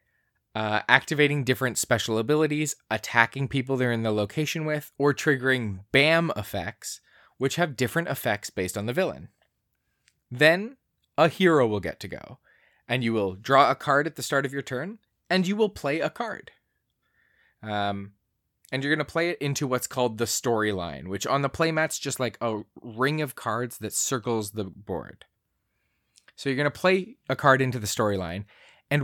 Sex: male